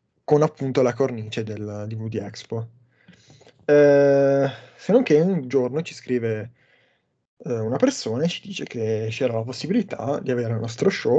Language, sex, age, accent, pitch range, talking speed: Italian, male, 20-39, native, 115-140 Hz, 165 wpm